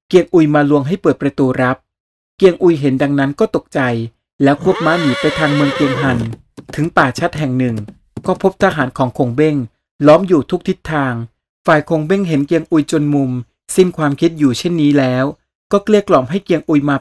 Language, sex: Thai, male